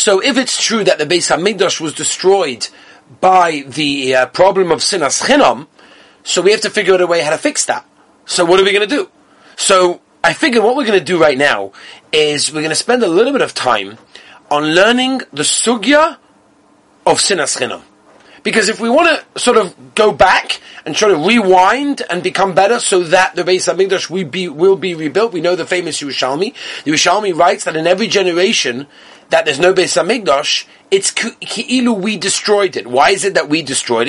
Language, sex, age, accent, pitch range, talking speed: English, male, 30-49, British, 160-235 Hz, 200 wpm